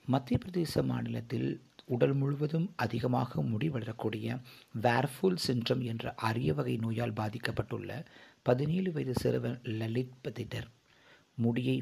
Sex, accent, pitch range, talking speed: male, native, 110-130 Hz, 100 wpm